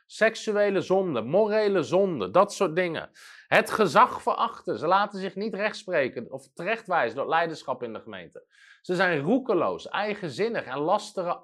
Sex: male